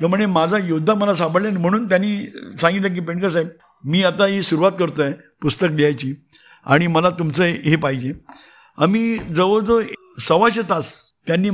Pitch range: 145-185 Hz